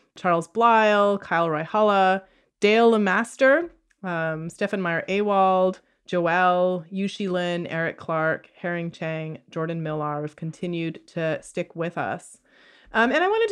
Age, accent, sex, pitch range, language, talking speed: 30-49, American, female, 165-205 Hz, English, 130 wpm